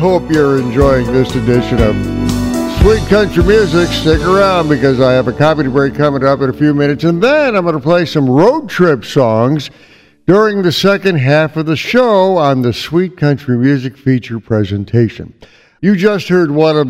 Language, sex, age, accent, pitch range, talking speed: English, male, 60-79, American, 130-180 Hz, 185 wpm